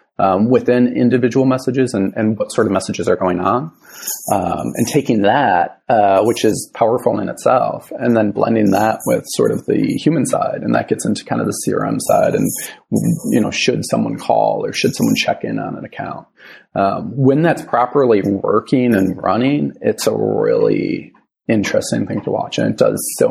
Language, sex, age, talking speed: English, male, 30-49, 190 wpm